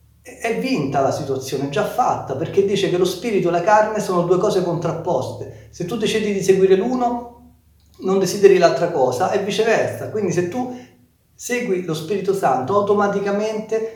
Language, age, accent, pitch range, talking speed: Italian, 40-59, native, 125-190 Hz, 170 wpm